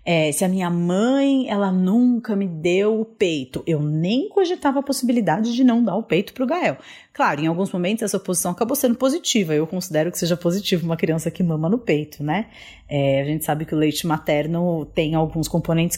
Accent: Brazilian